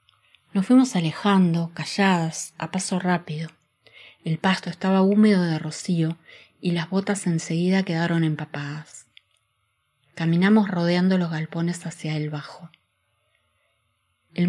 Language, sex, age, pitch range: Spanish, female, 30-49, 150-180 Hz